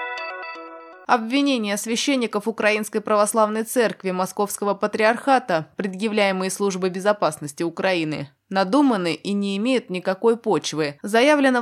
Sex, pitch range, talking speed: female, 185-235 Hz, 95 wpm